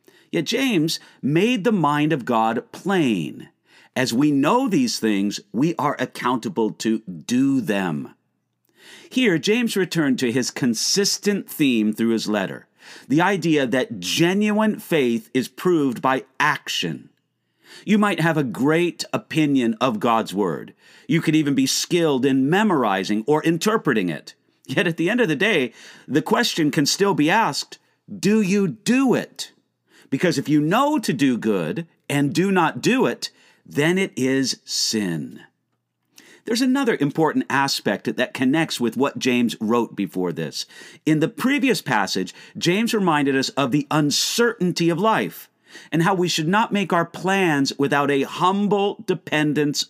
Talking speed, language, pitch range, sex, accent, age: 150 wpm, English, 135-200 Hz, male, American, 50-69